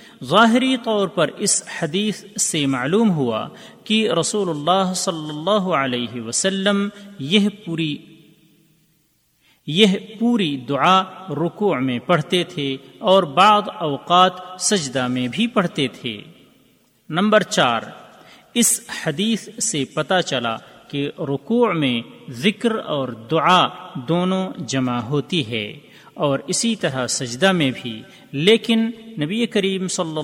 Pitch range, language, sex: 135-200 Hz, Urdu, male